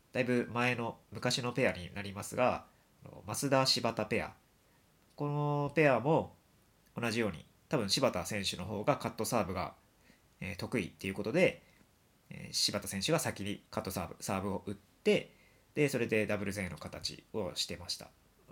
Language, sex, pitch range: Japanese, male, 100-145 Hz